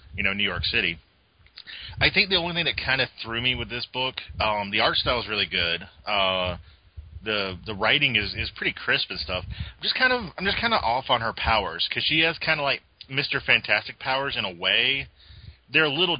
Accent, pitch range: American, 95-130 Hz